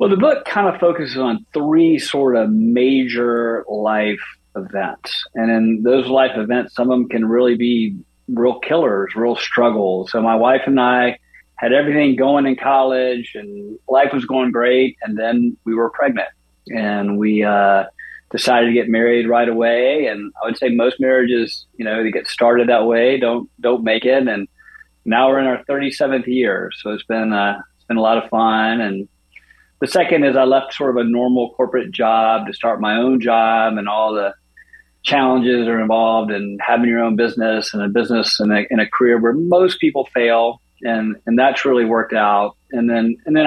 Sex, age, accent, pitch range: male, 40-59, American, 110-130 Hz